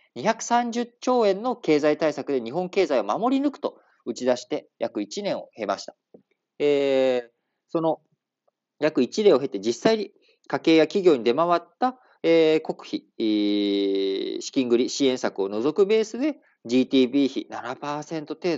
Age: 40-59